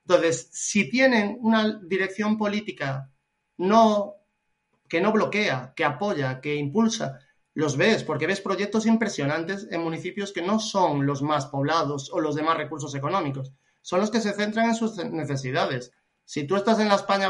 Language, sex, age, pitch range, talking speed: Spanish, male, 30-49, 140-195 Hz, 165 wpm